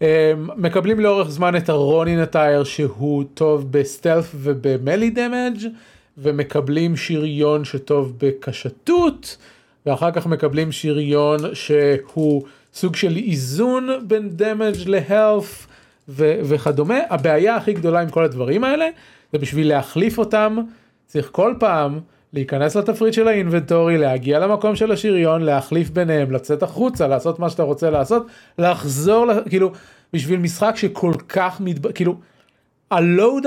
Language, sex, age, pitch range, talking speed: Hebrew, male, 30-49, 145-195 Hz, 120 wpm